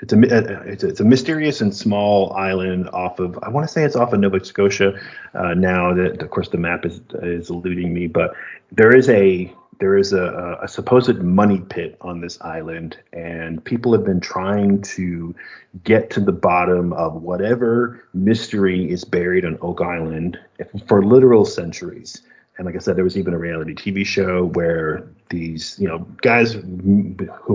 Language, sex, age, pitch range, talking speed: English, male, 30-49, 90-105 Hz, 185 wpm